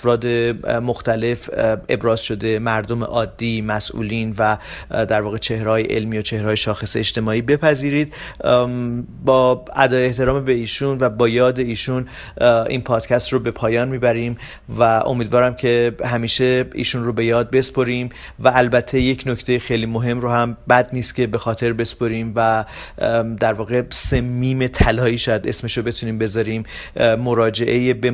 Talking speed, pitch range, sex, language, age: 140 wpm, 115-125 Hz, male, Persian, 40-59